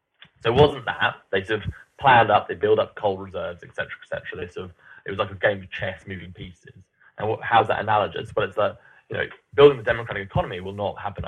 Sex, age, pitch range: male, 20-39, 95-130 Hz